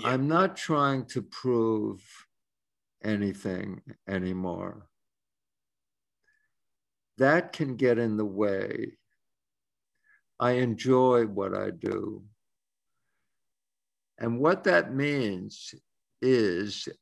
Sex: male